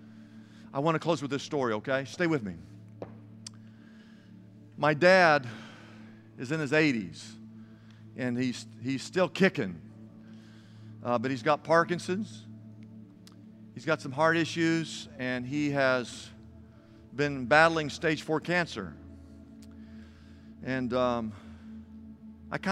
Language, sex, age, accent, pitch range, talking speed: English, male, 50-69, American, 110-155 Hz, 115 wpm